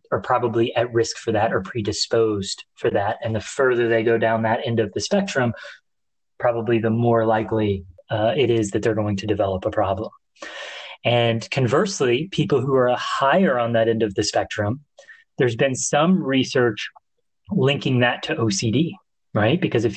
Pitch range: 110-135 Hz